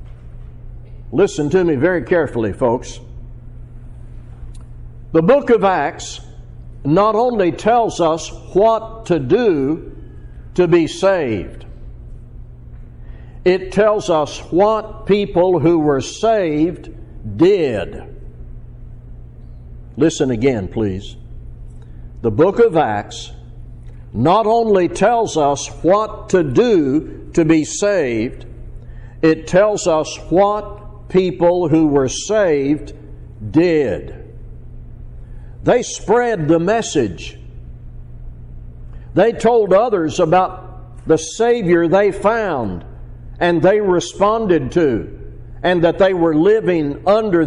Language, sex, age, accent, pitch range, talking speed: English, male, 60-79, American, 120-190 Hz, 95 wpm